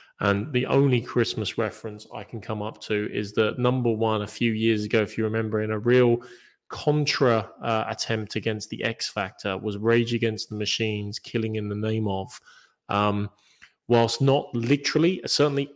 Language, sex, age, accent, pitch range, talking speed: English, male, 20-39, British, 100-120 Hz, 175 wpm